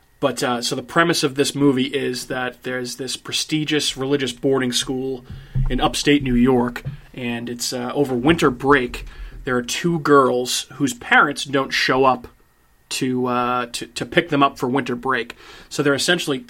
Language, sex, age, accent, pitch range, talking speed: English, male, 30-49, American, 125-145 Hz, 175 wpm